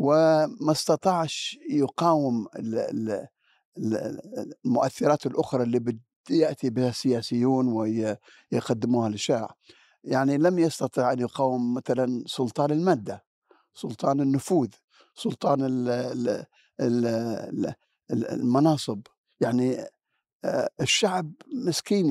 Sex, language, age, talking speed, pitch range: male, Arabic, 50-69, 70 wpm, 120-160 Hz